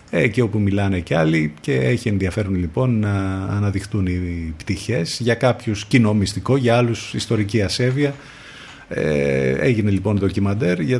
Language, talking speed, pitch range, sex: Greek, 145 wpm, 100-125 Hz, male